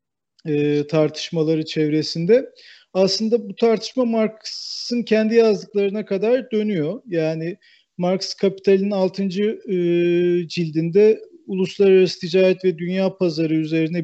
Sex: male